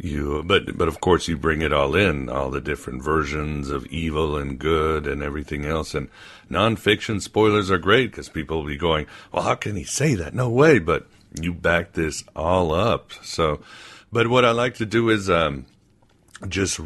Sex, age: male, 60-79